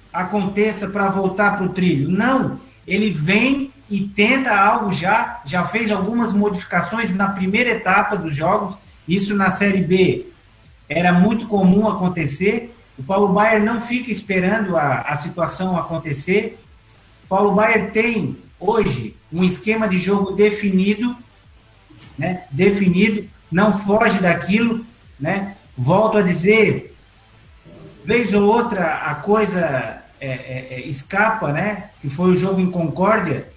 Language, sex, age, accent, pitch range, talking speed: Portuguese, male, 50-69, Brazilian, 175-215 Hz, 130 wpm